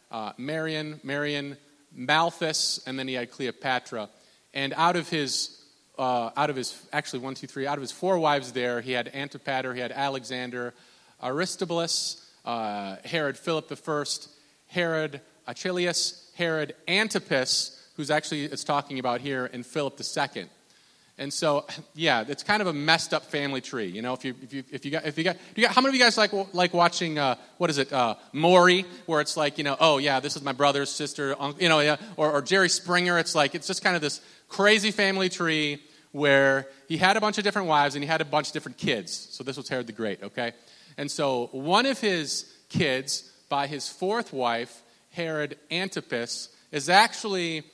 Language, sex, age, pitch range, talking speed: English, male, 30-49, 135-170 Hz, 195 wpm